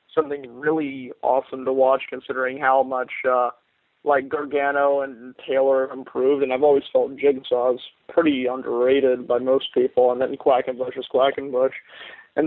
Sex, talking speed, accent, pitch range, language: male, 175 wpm, American, 140-170 Hz, English